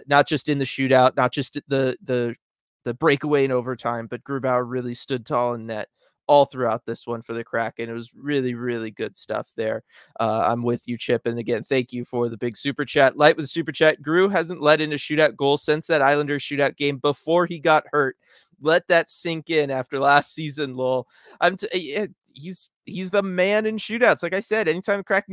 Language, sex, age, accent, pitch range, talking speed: English, male, 20-39, American, 130-175 Hz, 215 wpm